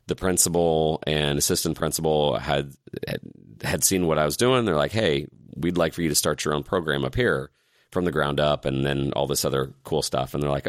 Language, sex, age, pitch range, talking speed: English, male, 30-49, 80-100 Hz, 225 wpm